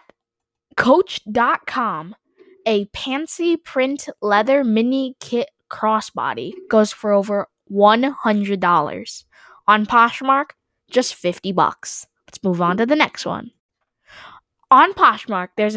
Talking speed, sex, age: 105 wpm, female, 10-29